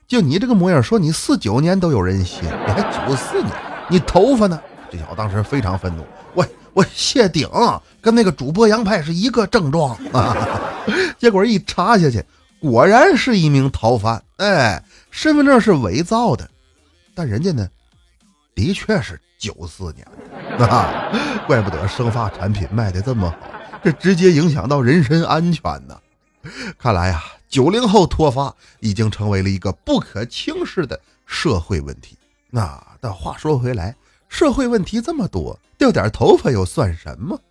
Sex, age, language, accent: male, 30-49, Chinese, native